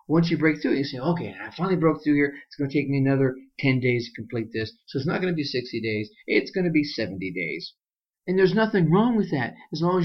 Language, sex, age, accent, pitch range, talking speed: English, male, 40-59, American, 125-175 Hz, 275 wpm